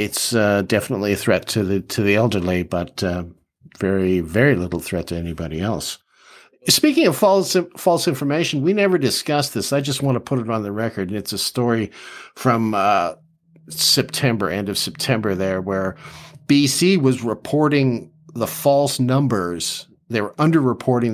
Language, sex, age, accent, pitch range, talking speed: English, male, 50-69, American, 105-145 Hz, 165 wpm